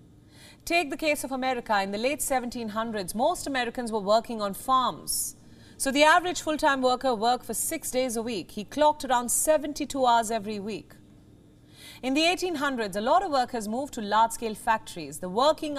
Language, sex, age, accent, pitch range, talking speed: English, female, 40-59, Indian, 215-290 Hz, 175 wpm